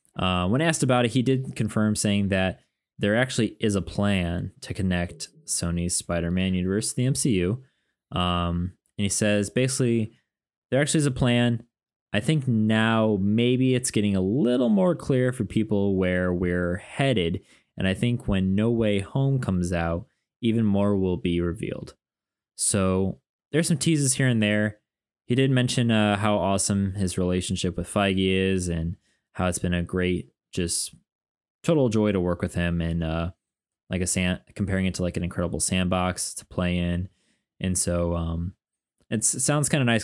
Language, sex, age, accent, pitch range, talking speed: English, male, 20-39, American, 90-115 Hz, 170 wpm